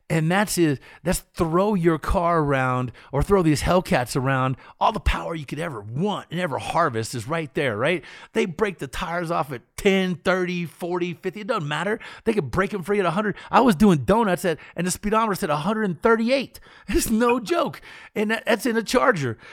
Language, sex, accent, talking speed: English, male, American, 200 wpm